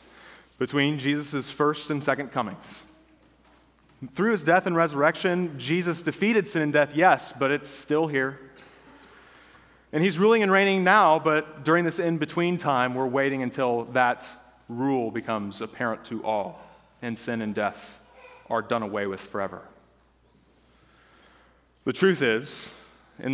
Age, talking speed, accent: 30-49, 140 wpm, American